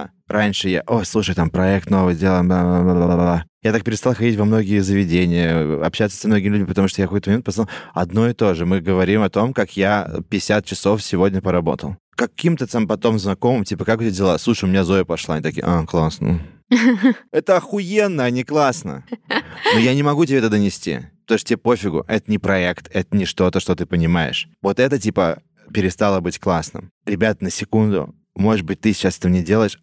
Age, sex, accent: 20-39, male, native